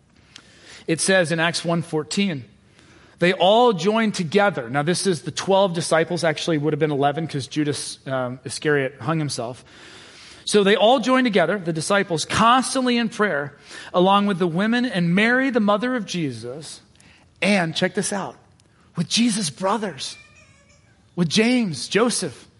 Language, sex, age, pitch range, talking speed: English, male, 30-49, 160-240 Hz, 150 wpm